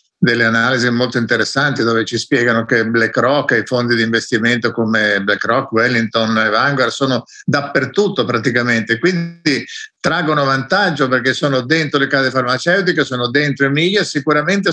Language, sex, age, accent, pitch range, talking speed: Italian, male, 50-69, native, 135-185 Hz, 145 wpm